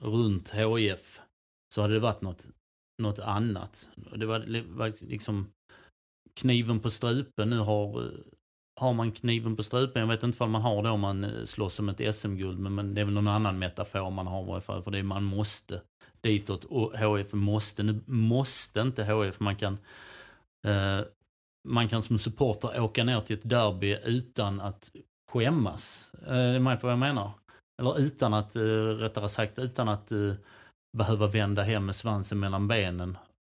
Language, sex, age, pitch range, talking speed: Swedish, male, 30-49, 100-115 Hz, 165 wpm